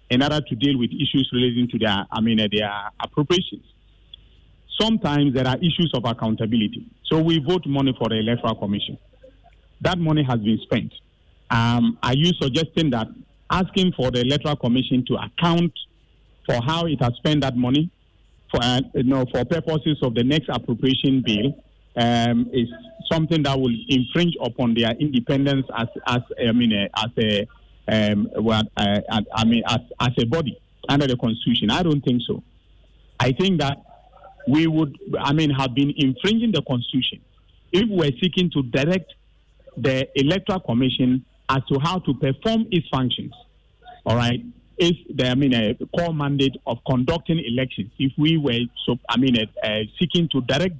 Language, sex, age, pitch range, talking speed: English, male, 50-69, 115-155 Hz, 170 wpm